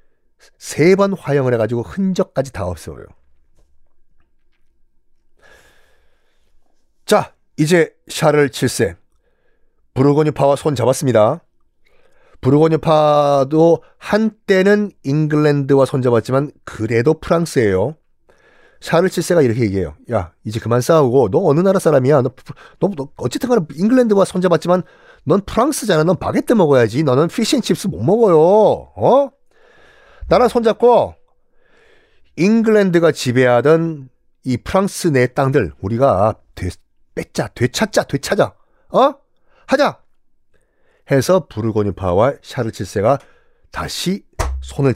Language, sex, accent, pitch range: Korean, male, native, 125-185 Hz